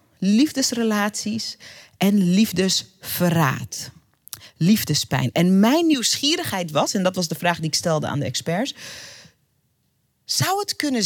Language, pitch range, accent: Dutch, 170-260 Hz, Dutch